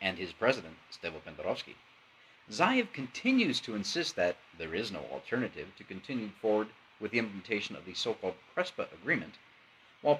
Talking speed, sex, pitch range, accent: 155 wpm, male, 100-135 Hz, American